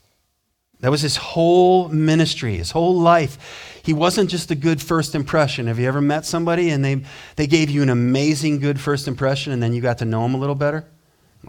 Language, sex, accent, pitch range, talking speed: English, male, American, 120-165 Hz, 215 wpm